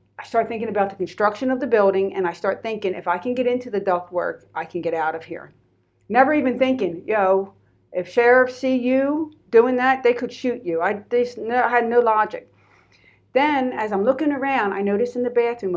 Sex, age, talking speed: female, 50-69, 210 wpm